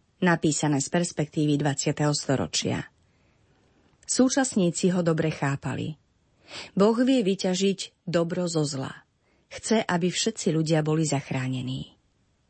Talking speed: 100 wpm